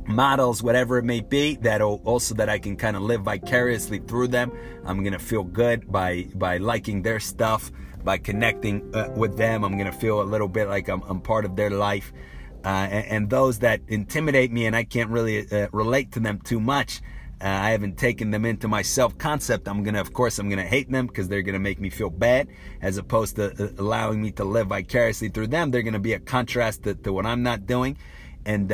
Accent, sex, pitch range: American, male, 100-120 Hz